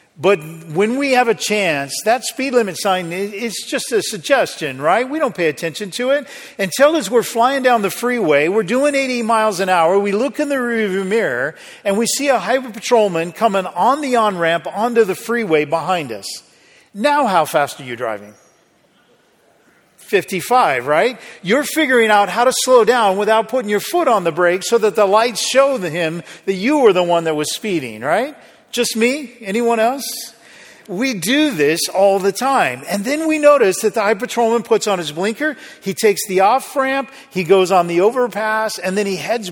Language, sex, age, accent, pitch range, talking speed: English, male, 50-69, American, 185-250 Hz, 195 wpm